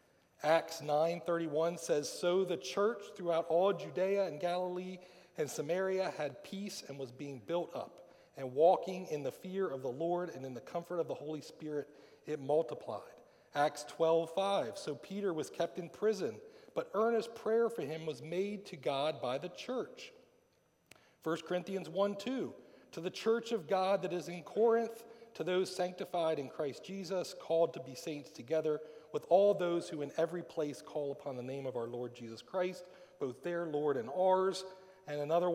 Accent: American